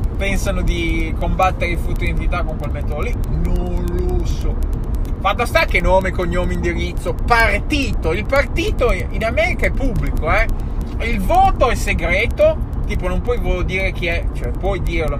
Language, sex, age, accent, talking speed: Italian, male, 20-39, native, 160 wpm